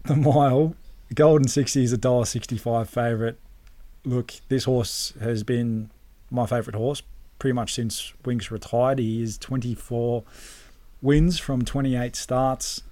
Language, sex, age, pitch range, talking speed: English, male, 20-39, 110-130 Hz, 130 wpm